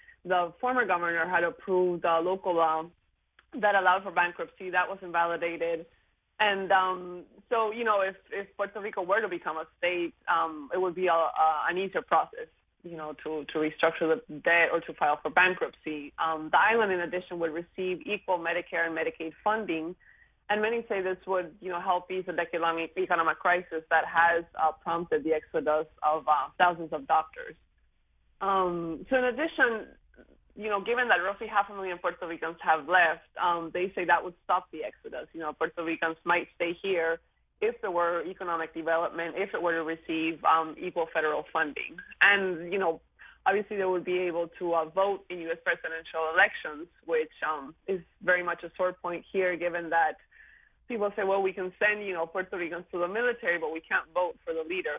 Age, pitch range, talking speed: 20-39, 165-195 Hz, 195 wpm